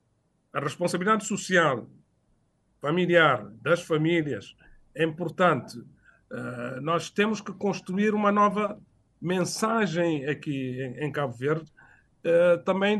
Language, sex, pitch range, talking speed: Portuguese, male, 150-190 Hz, 105 wpm